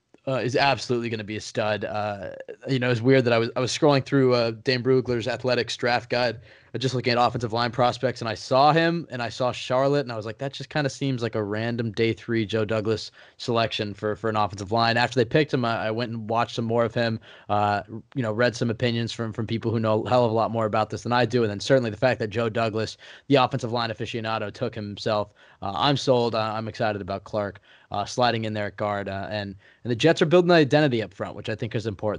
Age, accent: 20-39, American